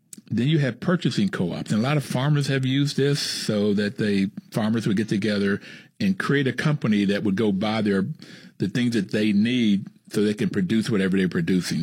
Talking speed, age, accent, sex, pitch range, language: 210 wpm, 50-69, American, male, 100-150 Hz, English